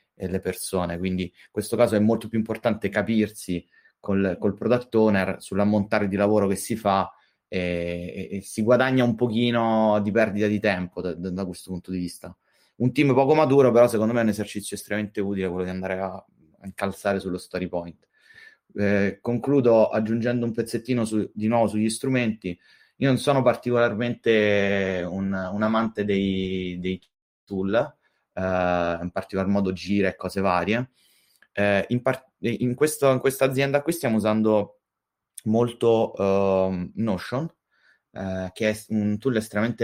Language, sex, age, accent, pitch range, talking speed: Italian, male, 30-49, native, 95-115 Hz, 160 wpm